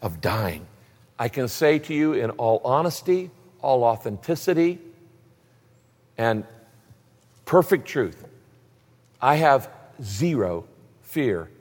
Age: 50-69